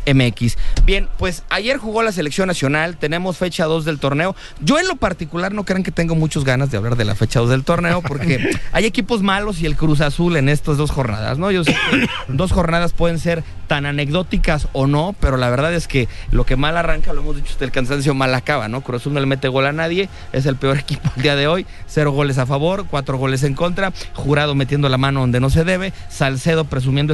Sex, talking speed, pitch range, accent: male, 235 wpm, 130-165 Hz, Mexican